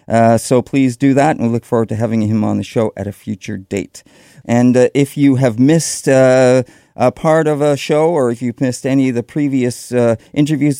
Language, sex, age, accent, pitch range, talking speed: English, male, 40-59, American, 115-140 Hz, 230 wpm